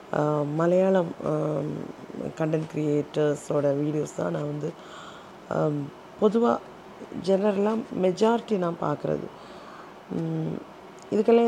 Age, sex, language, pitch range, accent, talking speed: 30-49, female, Tamil, 170-200 Hz, native, 70 wpm